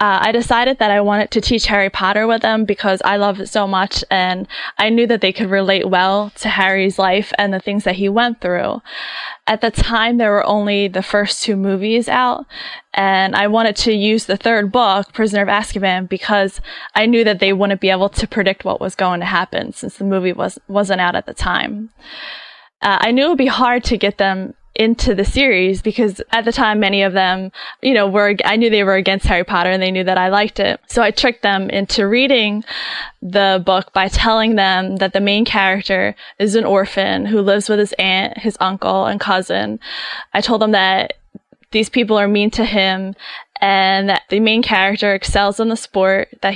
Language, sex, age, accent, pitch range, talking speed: English, female, 10-29, American, 195-225 Hz, 215 wpm